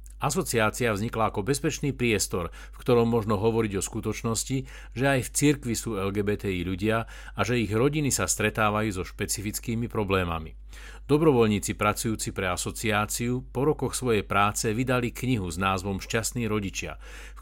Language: Slovak